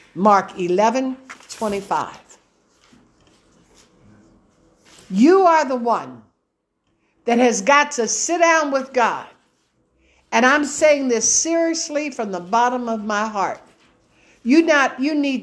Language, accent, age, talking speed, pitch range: English, American, 60-79, 120 wpm, 220-345 Hz